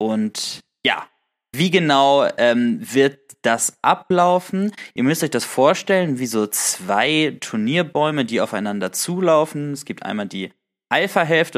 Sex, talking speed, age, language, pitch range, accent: male, 130 wpm, 20-39, German, 110-180 Hz, German